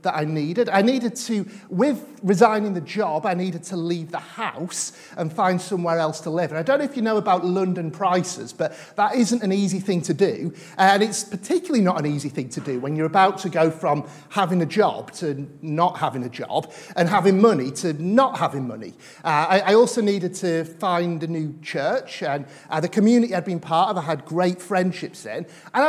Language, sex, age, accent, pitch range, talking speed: English, male, 40-59, British, 165-225 Hz, 220 wpm